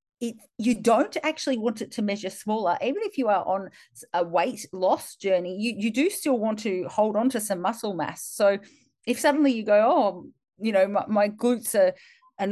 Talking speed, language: 200 wpm, English